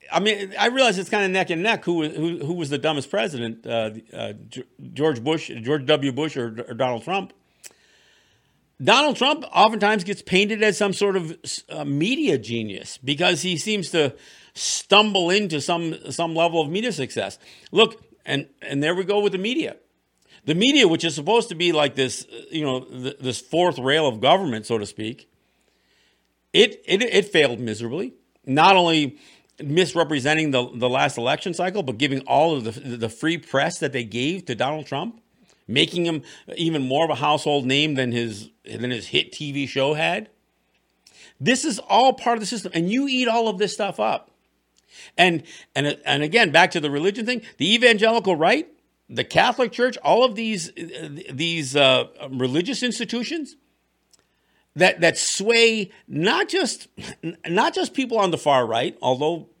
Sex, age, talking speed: male, 50-69, 175 wpm